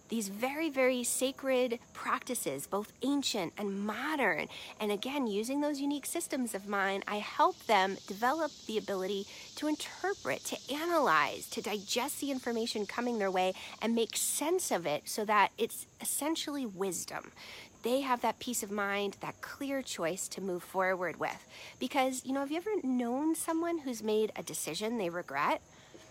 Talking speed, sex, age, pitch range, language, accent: 165 wpm, female, 40-59, 205-275 Hz, English, American